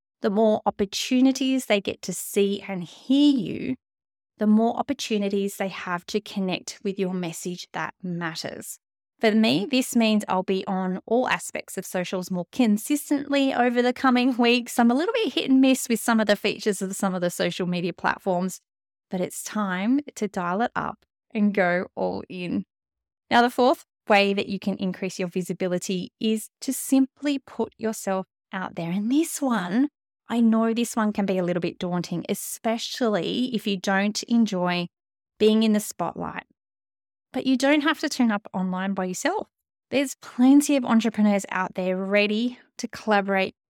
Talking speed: 175 wpm